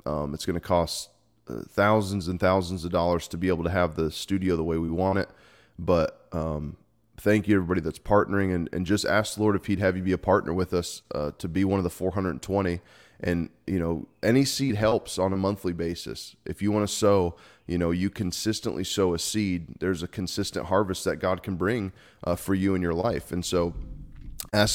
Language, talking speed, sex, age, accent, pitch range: English, 220 wpm, male, 20-39, American, 85-105 Hz